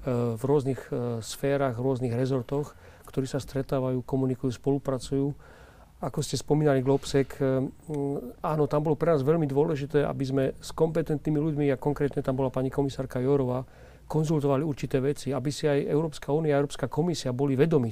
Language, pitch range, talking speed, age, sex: Slovak, 125-145 Hz, 155 wpm, 40-59, male